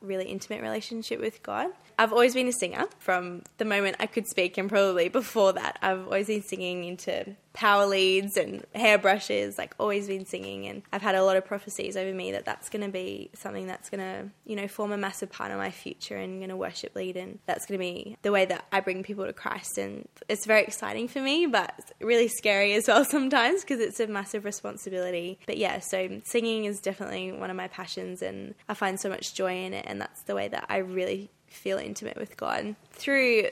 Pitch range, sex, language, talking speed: 185-215 Hz, female, English, 220 wpm